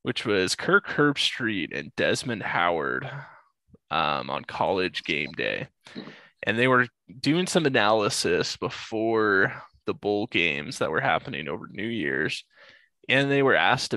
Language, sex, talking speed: English, male, 140 wpm